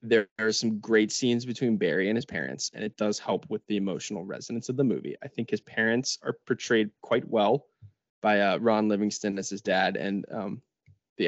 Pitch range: 105-140 Hz